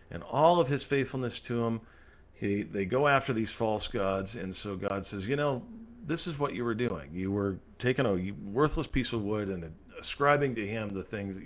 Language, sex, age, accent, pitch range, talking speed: English, male, 50-69, American, 95-160 Hz, 215 wpm